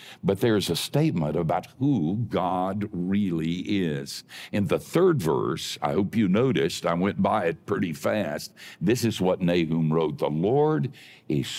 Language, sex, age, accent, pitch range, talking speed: English, male, 60-79, American, 85-125 Hz, 160 wpm